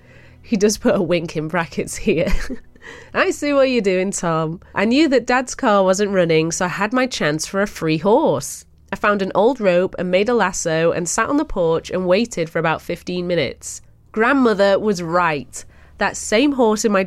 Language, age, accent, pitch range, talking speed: English, 30-49, British, 175-250 Hz, 205 wpm